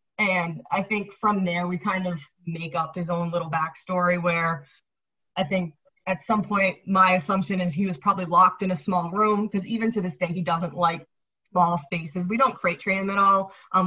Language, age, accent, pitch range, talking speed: English, 20-39, American, 170-195 Hz, 210 wpm